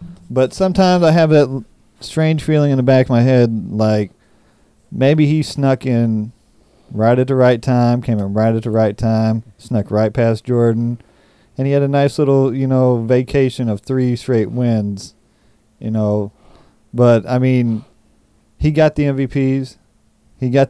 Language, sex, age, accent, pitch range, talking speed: English, male, 40-59, American, 115-130 Hz, 170 wpm